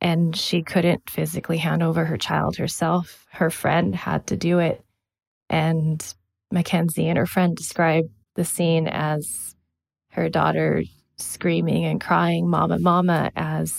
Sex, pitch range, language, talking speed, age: female, 155-175 Hz, English, 140 wpm, 20-39